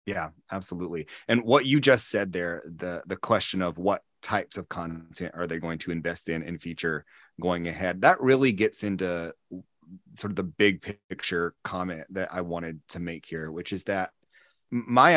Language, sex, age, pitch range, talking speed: English, male, 30-49, 85-100 Hz, 180 wpm